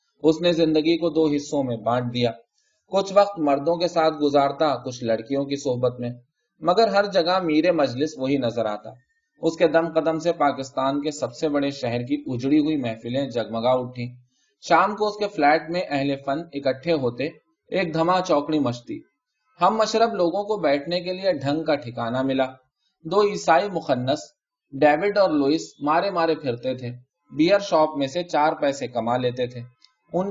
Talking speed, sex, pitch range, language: 165 wpm, male, 130-175 Hz, Urdu